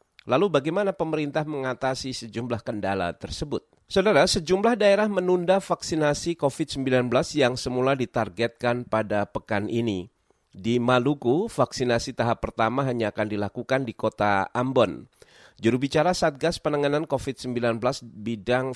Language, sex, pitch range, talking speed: Indonesian, male, 115-155 Hz, 115 wpm